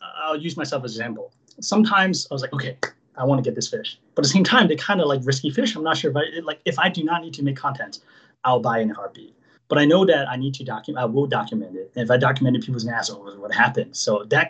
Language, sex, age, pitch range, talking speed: English, male, 30-49, 125-160 Hz, 280 wpm